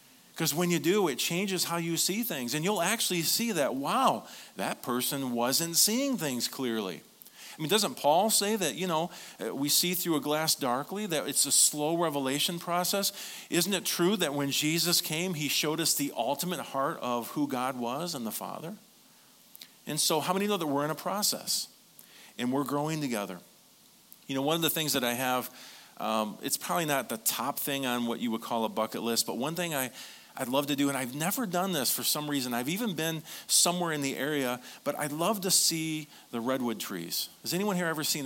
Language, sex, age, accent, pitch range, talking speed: English, male, 40-59, American, 135-180 Hz, 215 wpm